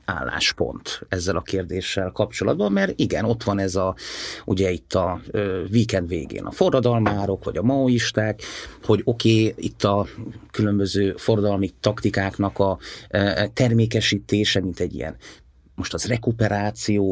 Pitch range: 95-115 Hz